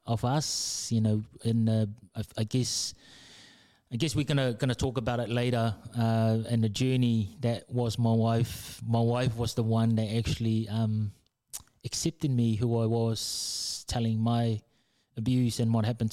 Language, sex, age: English, male, 20-39